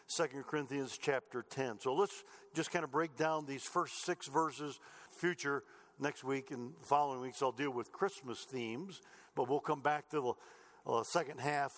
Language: English